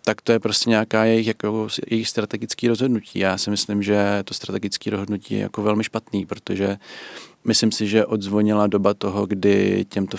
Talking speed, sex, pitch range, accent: 175 wpm, male, 95-100 Hz, native